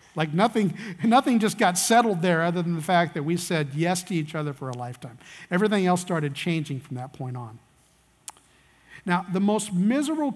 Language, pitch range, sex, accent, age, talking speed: English, 150-205 Hz, male, American, 50-69, 190 wpm